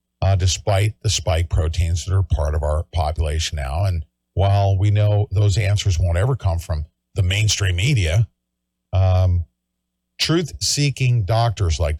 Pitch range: 80-110 Hz